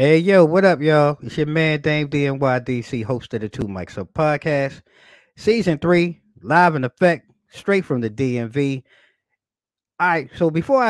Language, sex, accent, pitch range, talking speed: English, male, American, 105-150 Hz, 165 wpm